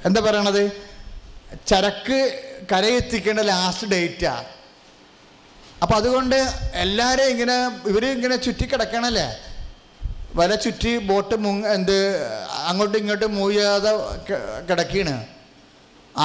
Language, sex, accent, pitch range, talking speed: English, male, Indian, 165-220 Hz, 115 wpm